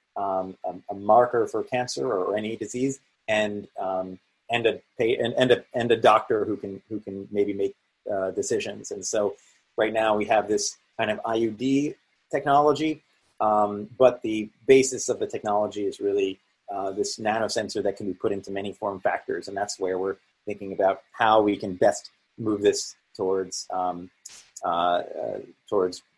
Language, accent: English, American